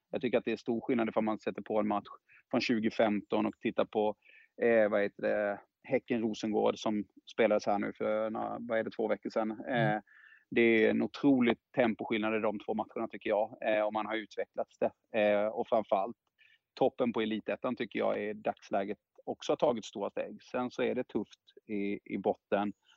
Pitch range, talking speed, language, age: 105-115 Hz, 200 wpm, English, 30-49